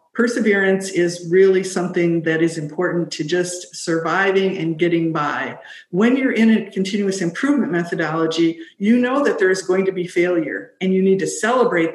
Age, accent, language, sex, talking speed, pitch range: 50-69, American, English, female, 170 wpm, 175-225 Hz